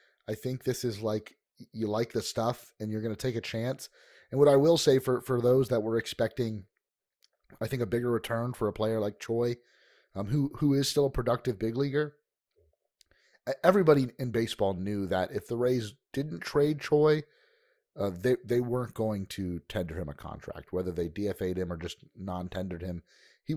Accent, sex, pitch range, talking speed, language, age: American, male, 95-130 Hz, 195 wpm, English, 30-49